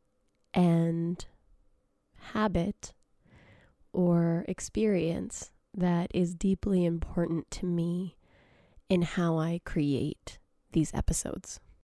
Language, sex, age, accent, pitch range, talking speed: English, female, 20-39, American, 160-180 Hz, 80 wpm